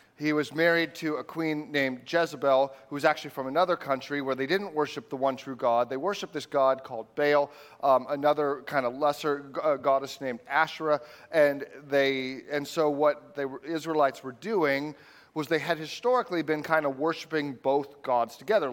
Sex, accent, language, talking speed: male, American, English, 175 wpm